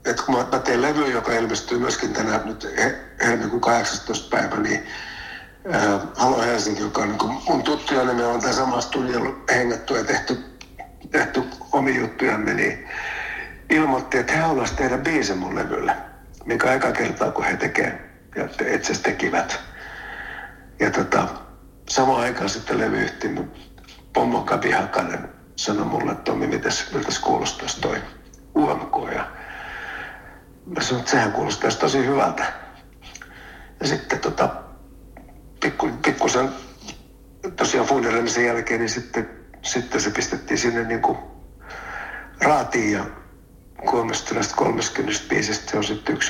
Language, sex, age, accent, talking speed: Finnish, male, 60-79, native, 120 wpm